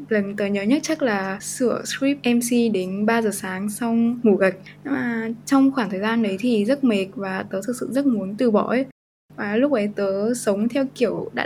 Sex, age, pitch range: female, 10-29, 205-255 Hz